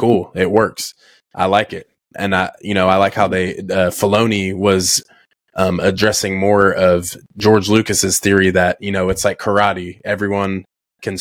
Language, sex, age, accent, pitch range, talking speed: English, male, 20-39, American, 95-105 Hz, 170 wpm